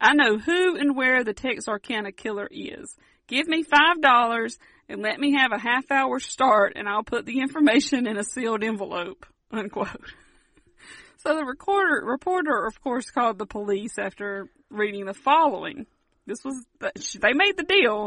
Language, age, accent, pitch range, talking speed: English, 40-59, American, 210-290 Hz, 160 wpm